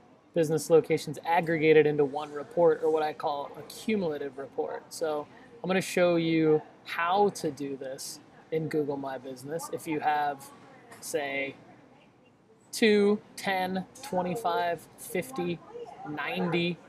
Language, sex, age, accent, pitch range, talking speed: English, male, 20-39, American, 150-180 Hz, 125 wpm